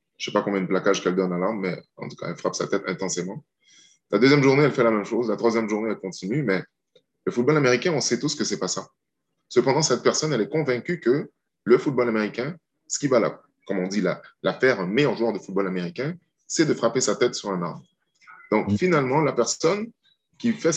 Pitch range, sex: 105-165 Hz, male